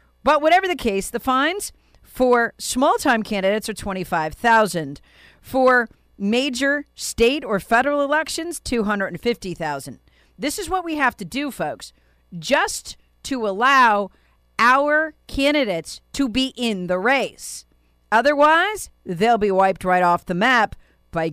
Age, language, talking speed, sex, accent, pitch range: 40-59, English, 145 wpm, female, American, 165-260 Hz